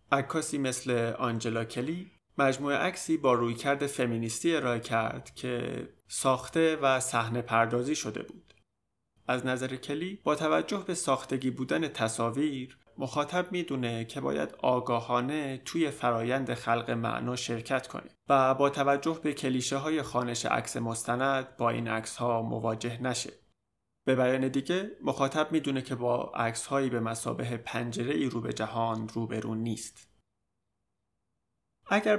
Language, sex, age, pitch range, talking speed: Persian, male, 30-49, 115-140 Hz, 130 wpm